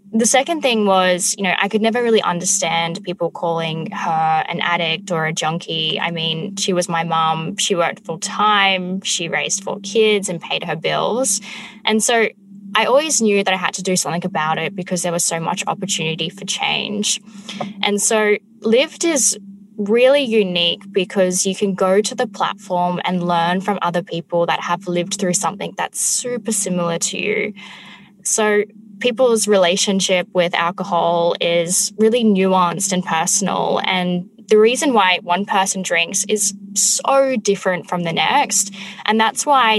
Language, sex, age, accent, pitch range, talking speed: English, female, 10-29, Australian, 175-210 Hz, 170 wpm